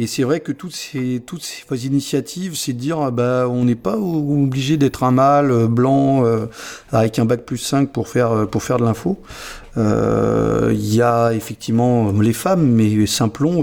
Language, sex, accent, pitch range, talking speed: French, male, French, 115-145 Hz, 185 wpm